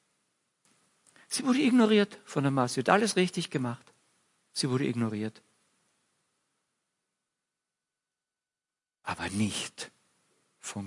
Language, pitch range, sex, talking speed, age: German, 105-160 Hz, male, 95 wpm, 50-69